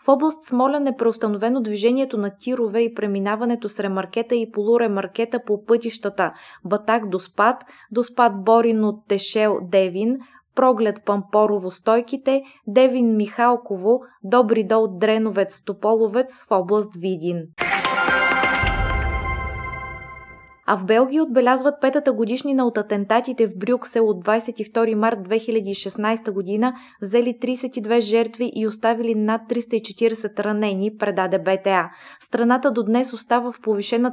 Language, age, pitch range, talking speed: Bulgarian, 20-39, 200-240 Hz, 105 wpm